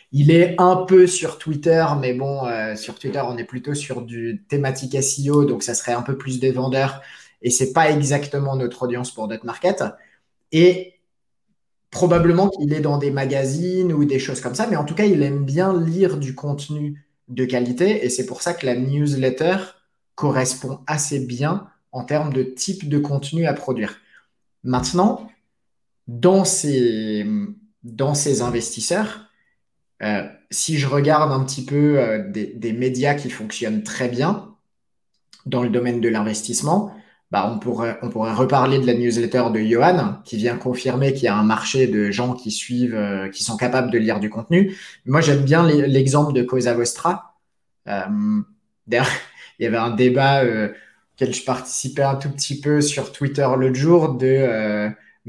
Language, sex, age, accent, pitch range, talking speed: French, male, 20-39, French, 125-155 Hz, 175 wpm